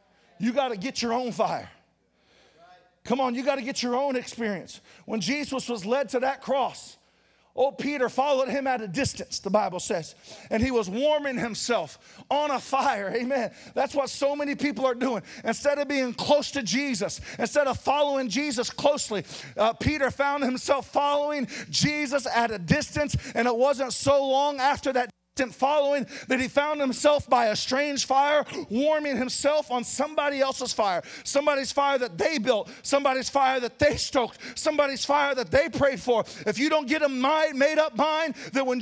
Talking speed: 180 wpm